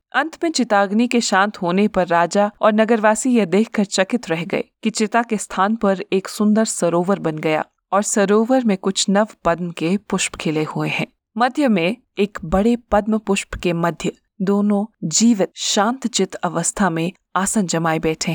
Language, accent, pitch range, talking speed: Hindi, native, 180-220 Hz, 175 wpm